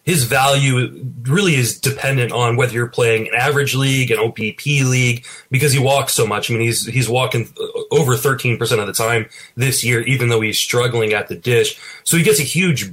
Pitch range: 120-150 Hz